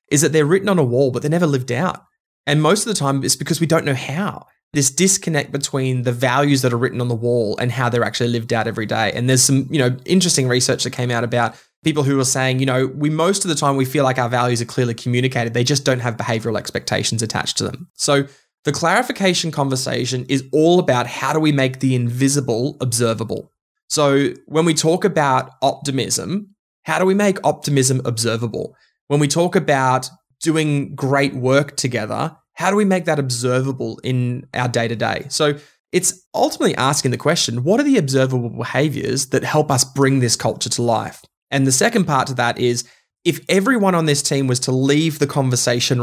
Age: 20-39